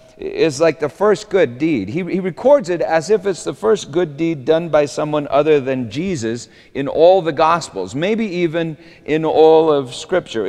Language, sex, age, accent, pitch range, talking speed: English, male, 40-59, American, 130-190 Hz, 190 wpm